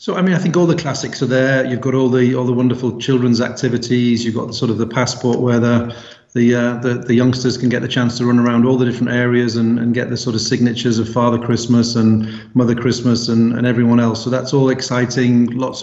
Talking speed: 245 wpm